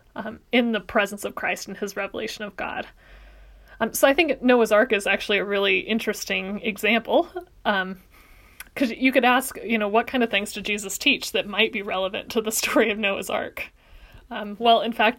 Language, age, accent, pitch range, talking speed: English, 30-49, American, 205-245 Hz, 200 wpm